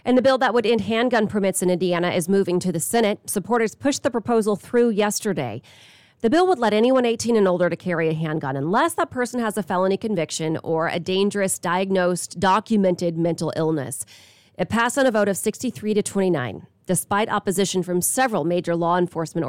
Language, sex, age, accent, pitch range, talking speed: English, female, 30-49, American, 165-220 Hz, 195 wpm